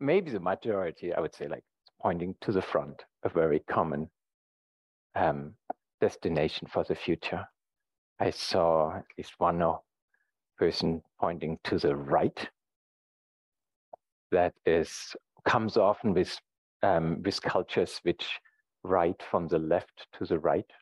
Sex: male